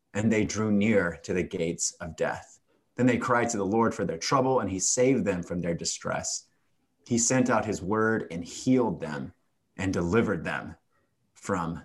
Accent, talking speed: American, 185 wpm